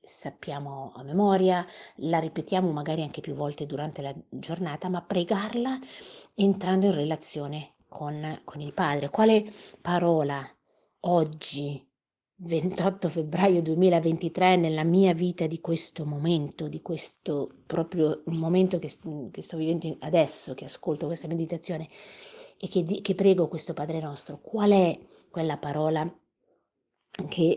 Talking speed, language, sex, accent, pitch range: 125 wpm, Italian, female, native, 155-185 Hz